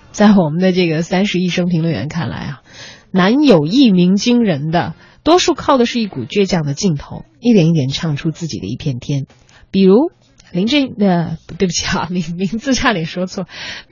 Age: 20-39